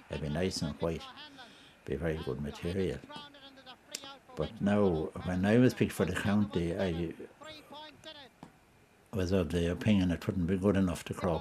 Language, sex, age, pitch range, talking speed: English, male, 60-79, 85-125 Hz, 160 wpm